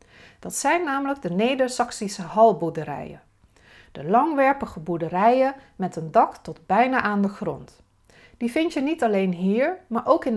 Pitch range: 175-245 Hz